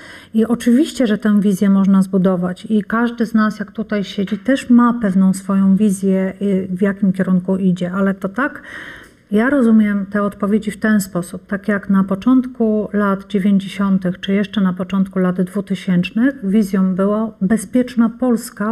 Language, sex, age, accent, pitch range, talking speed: Polish, female, 40-59, native, 195-235 Hz, 155 wpm